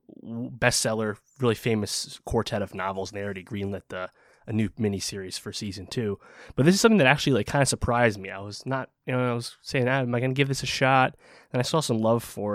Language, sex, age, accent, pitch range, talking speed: English, male, 20-39, American, 100-120 Hz, 245 wpm